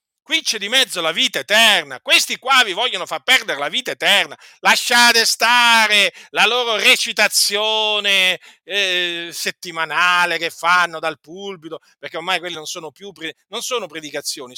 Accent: native